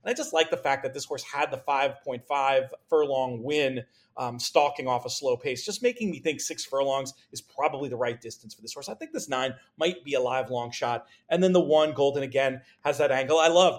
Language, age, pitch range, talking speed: English, 40-59, 130-180 Hz, 235 wpm